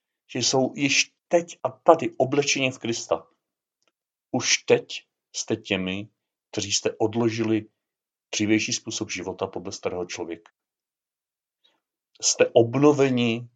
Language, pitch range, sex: Czech, 100-120 Hz, male